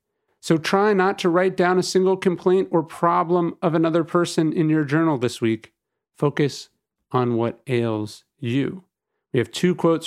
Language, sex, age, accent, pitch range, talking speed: English, male, 40-59, American, 130-170 Hz, 165 wpm